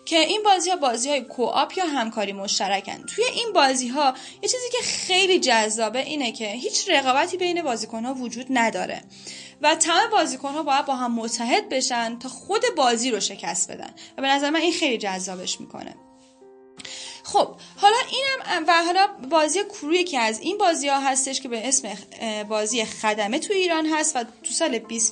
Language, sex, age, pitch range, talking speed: Persian, female, 10-29, 225-320 Hz, 180 wpm